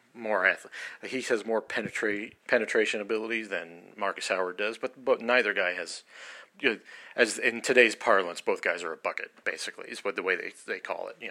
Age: 40-59